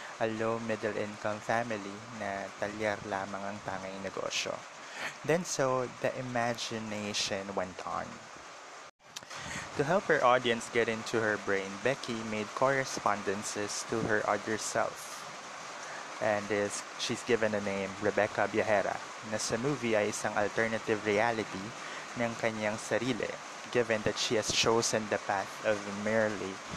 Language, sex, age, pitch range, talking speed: Filipino, male, 20-39, 105-120 Hz, 130 wpm